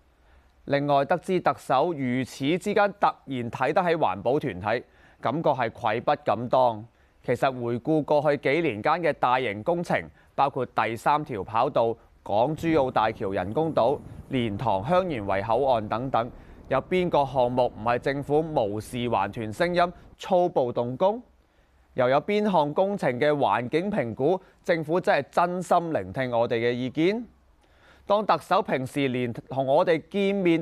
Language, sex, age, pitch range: Chinese, male, 20-39, 115-170 Hz